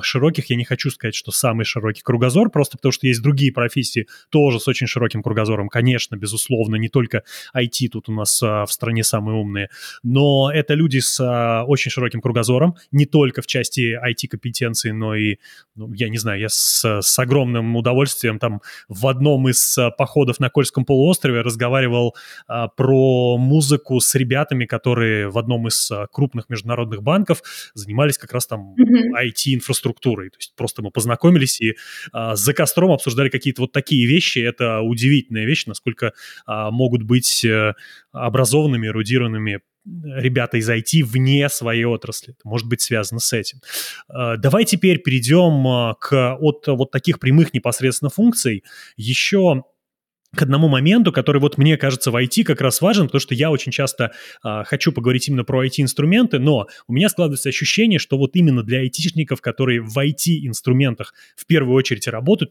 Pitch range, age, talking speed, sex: 115-145 Hz, 20-39, 155 wpm, male